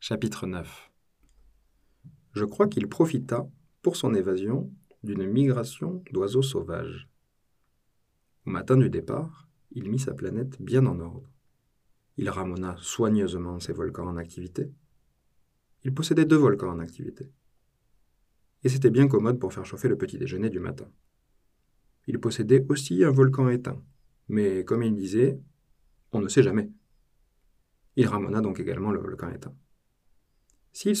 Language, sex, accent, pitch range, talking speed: French, male, French, 100-135 Hz, 135 wpm